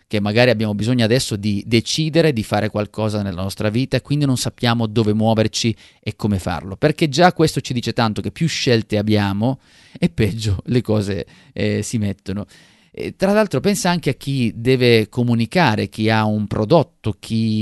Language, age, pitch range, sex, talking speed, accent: Italian, 30-49, 100-135 Hz, male, 175 wpm, native